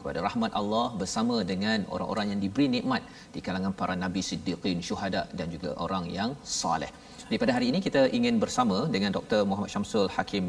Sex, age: male, 40-59